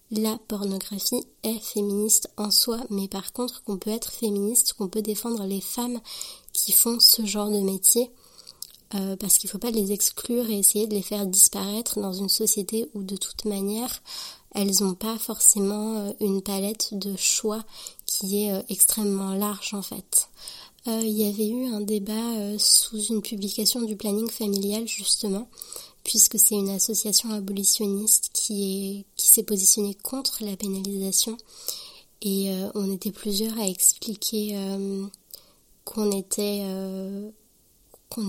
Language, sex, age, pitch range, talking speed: French, female, 20-39, 195-220 Hz, 145 wpm